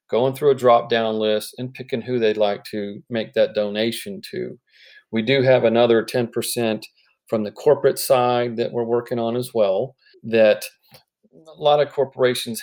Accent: American